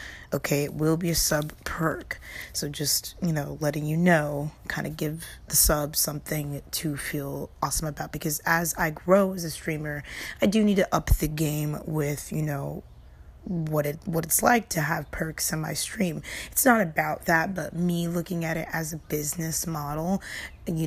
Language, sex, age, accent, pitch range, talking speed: English, female, 20-39, American, 155-175 Hz, 185 wpm